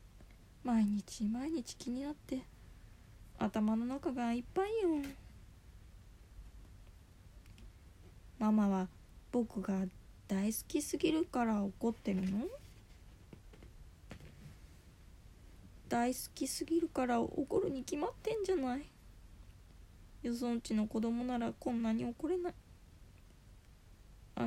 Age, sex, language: 20-39, female, Japanese